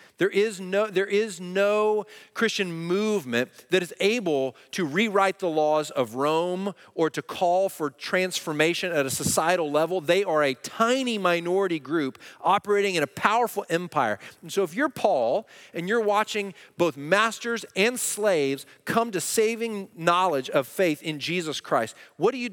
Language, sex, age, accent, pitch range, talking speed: English, male, 40-59, American, 140-200 Hz, 160 wpm